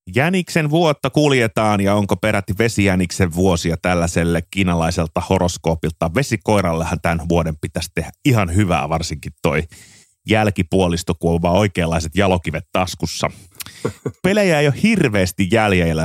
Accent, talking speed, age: native, 110 wpm, 30-49